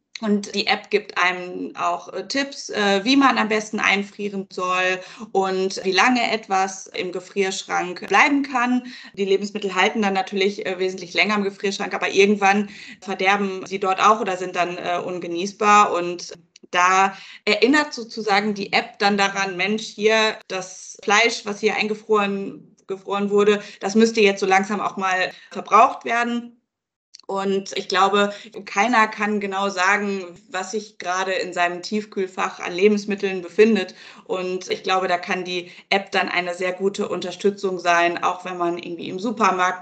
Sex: female